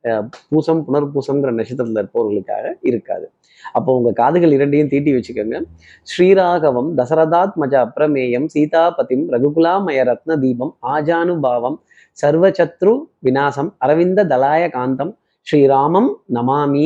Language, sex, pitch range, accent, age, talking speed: Tamil, male, 130-165 Hz, native, 30-49, 95 wpm